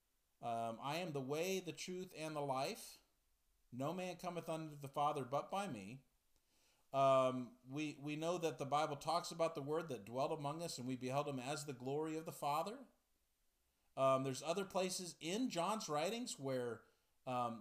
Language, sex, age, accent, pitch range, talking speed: English, male, 40-59, American, 125-185 Hz, 180 wpm